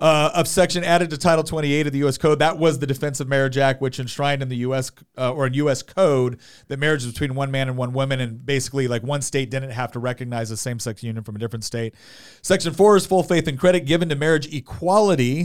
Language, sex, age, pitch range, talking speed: English, male, 40-59, 130-160 Hz, 250 wpm